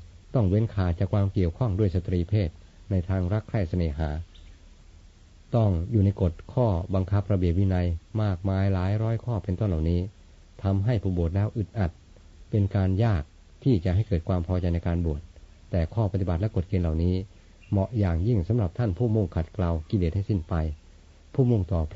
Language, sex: Thai, male